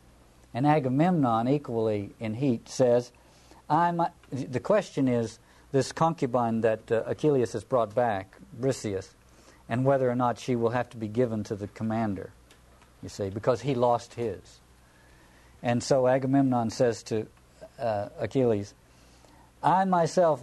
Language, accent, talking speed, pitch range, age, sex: English, American, 135 wpm, 105-140 Hz, 50-69, male